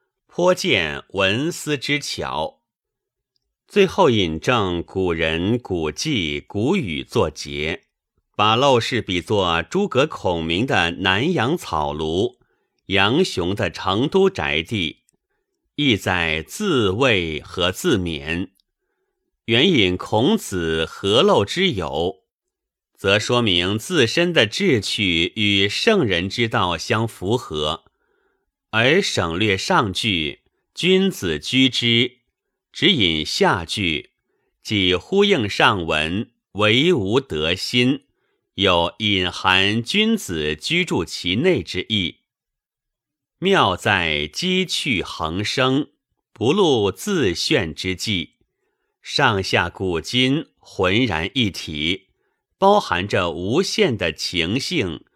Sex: male